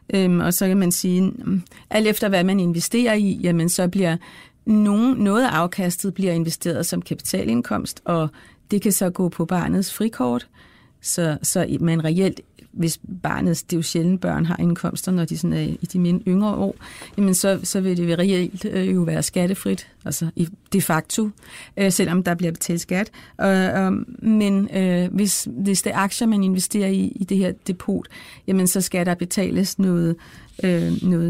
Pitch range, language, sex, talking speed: 175-200 Hz, Danish, female, 170 wpm